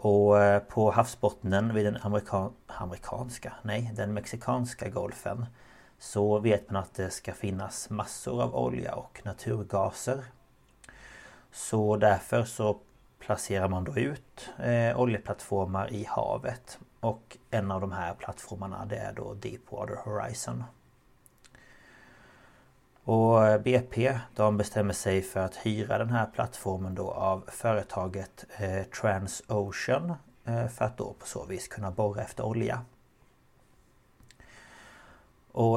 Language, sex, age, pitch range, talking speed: Swedish, male, 30-49, 100-120 Hz, 115 wpm